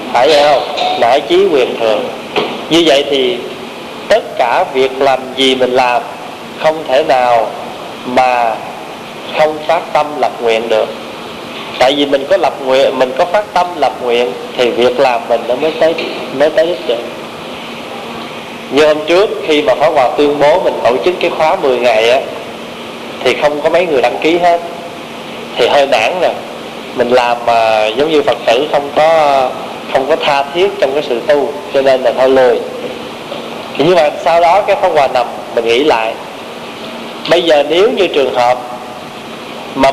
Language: Vietnamese